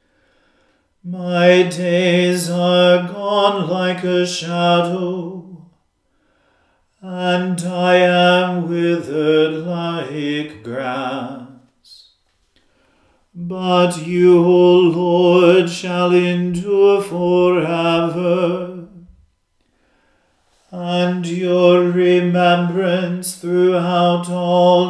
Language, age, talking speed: English, 40-59, 60 wpm